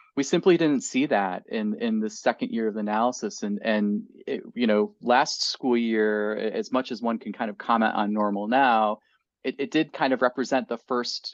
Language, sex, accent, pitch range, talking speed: English, male, American, 105-135 Hz, 205 wpm